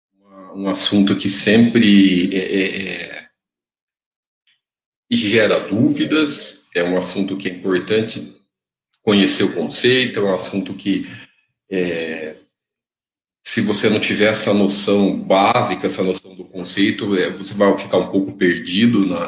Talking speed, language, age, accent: 130 wpm, Portuguese, 50-69, Brazilian